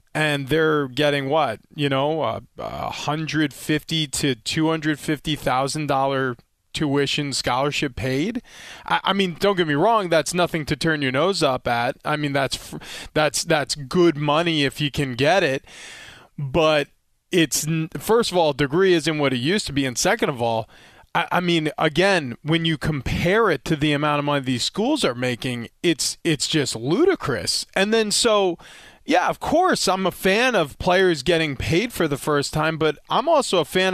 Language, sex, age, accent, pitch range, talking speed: English, male, 20-39, American, 140-175 Hz, 180 wpm